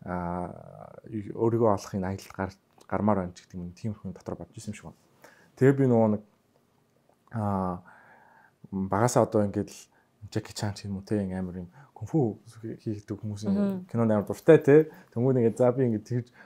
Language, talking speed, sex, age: English, 75 wpm, male, 20-39